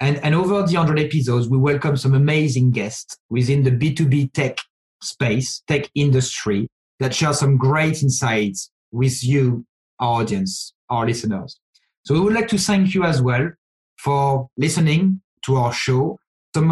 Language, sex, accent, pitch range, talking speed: English, male, French, 130-155 Hz, 160 wpm